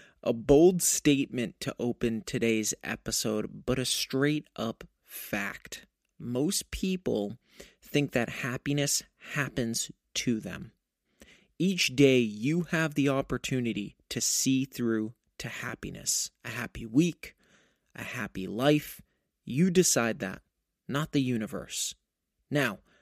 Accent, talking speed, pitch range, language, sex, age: American, 110 wpm, 115-150 Hz, English, male, 30-49